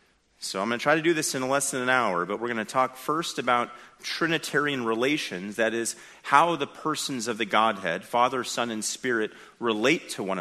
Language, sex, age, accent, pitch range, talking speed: English, male, 30-49, American, 105-140 Hz, 215 wpm